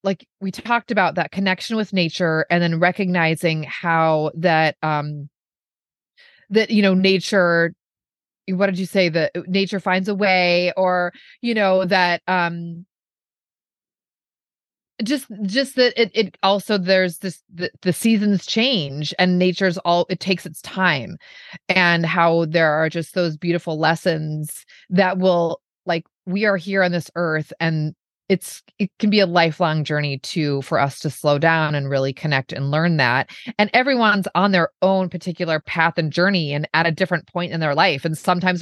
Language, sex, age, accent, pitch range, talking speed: English, female, 30-49, American, 165-190 Hz, 165 wpm